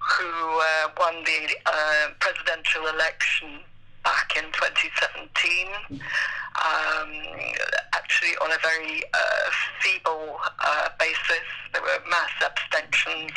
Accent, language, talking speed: British, English, 105 wpm